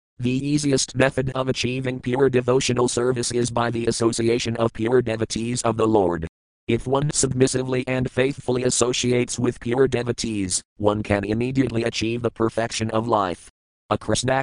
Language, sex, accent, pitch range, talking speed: English, male, American, 105-125 Hz, 155 wpm